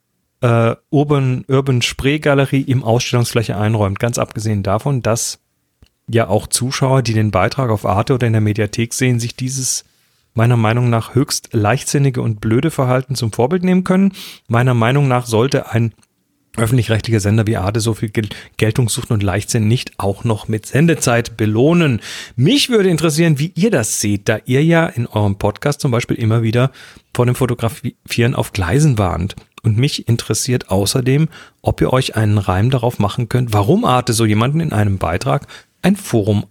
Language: German